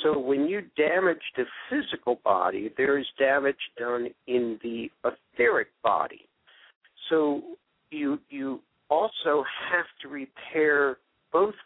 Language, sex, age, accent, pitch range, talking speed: English, male, 60-79, American, 120-185 Hz, 120 wpm